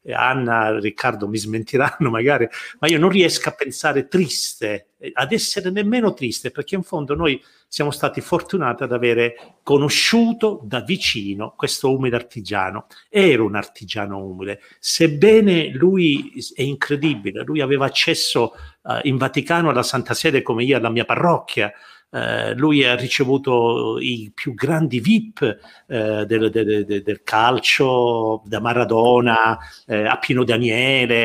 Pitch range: 120-155 Hz